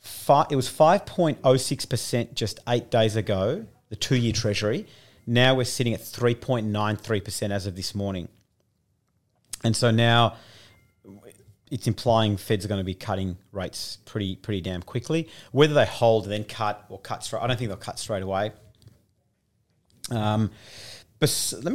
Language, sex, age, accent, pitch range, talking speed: English, male, 40-59, Australian, 105-125 Hz, 145 wpm